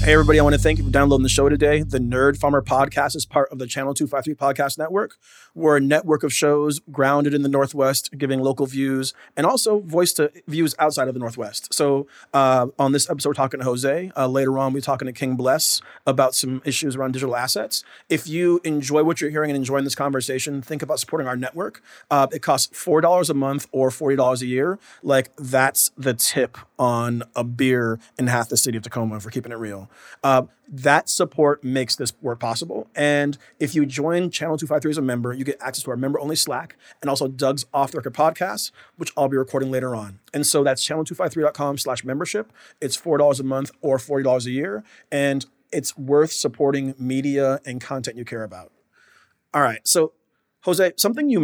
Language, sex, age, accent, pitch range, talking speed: English, male, 30-49, American, 130-150 Hz, 205 wpm